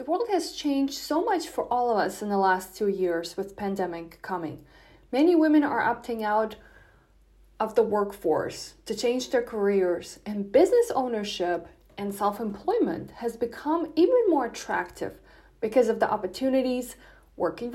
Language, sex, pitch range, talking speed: English, female, 205-285 Hz, 150 wpm